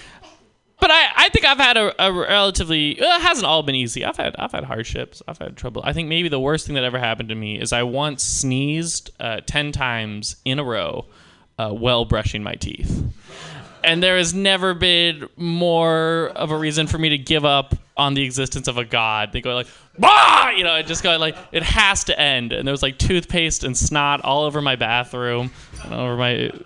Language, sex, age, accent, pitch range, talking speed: English, male, 20-39, American, 115-155 Hz, 220 wpm